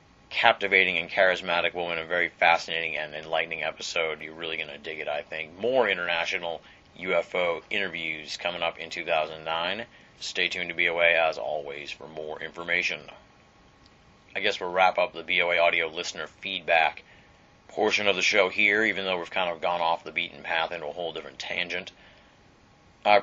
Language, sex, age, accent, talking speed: English, male, 30-49, American, 170 wpm